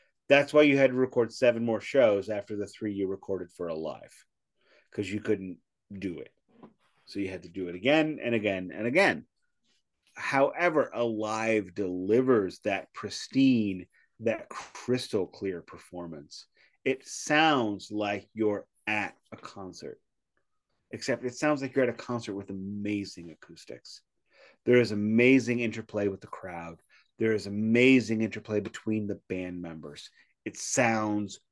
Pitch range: 100-125 Hz